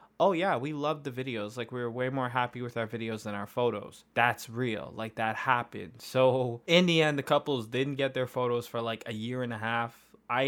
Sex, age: male, 20-39